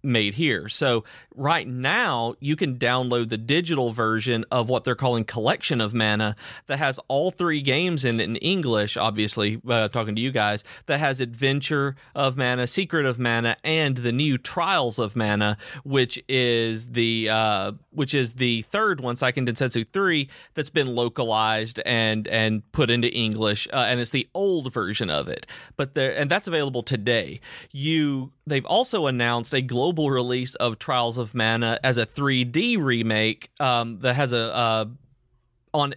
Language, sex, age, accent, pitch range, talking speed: English, male, 30-49, American, 110-135 Hz, 170 wpm